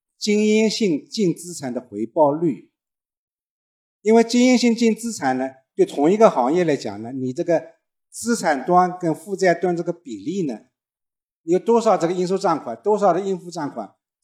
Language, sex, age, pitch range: Chinese, male, 50-69, 130-200 Hz